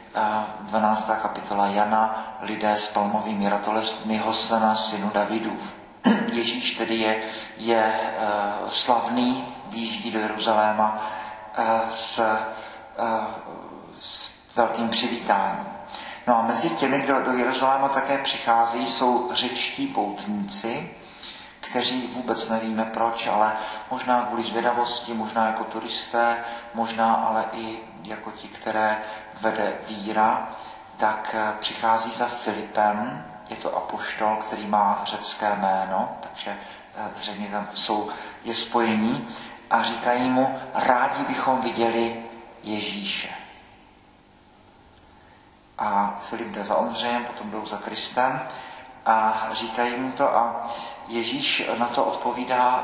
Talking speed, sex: 110 wpm, male